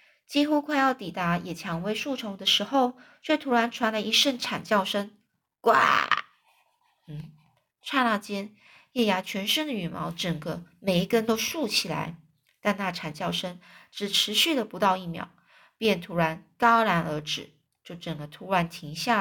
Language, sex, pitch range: Chinese, female, 170-235 Hz